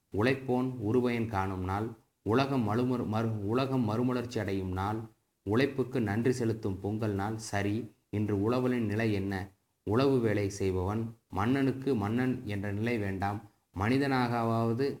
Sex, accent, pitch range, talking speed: male, native, 100-120 Hz, 120 wpm